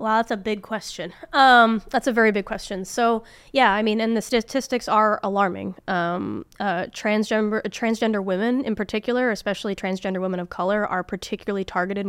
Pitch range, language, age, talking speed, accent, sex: 180-220 Hz, English, 20-39, 180 wpm, American, female